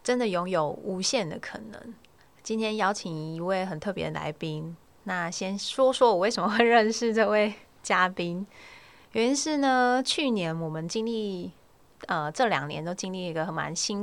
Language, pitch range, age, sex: Chinese, 170-225 Hz, 20-39, female